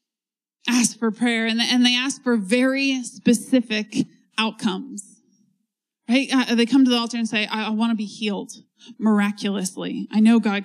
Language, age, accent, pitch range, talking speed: English, 20-39, American, 210-255 Hz, 150 wpm